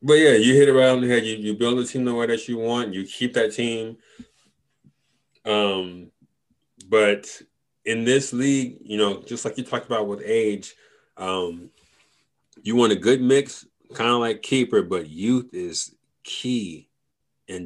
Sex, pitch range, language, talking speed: male, 95-125 Hz, English, 175 wpm